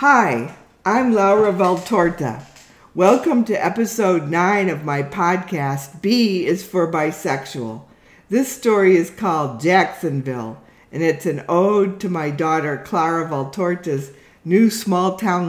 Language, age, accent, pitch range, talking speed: English, 50-69, American, 145-190 Hz, 125 wpm